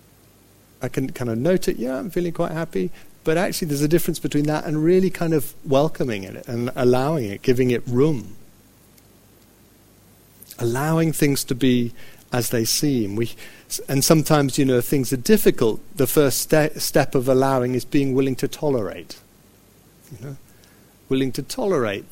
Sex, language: male, English